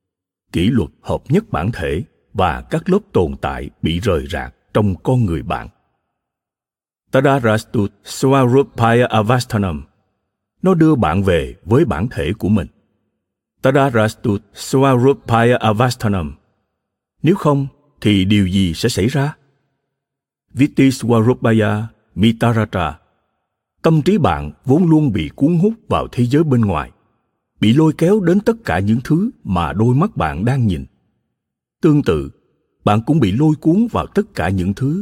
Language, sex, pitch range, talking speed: Vietnamese, male, 95-145 Hz, 140 wpm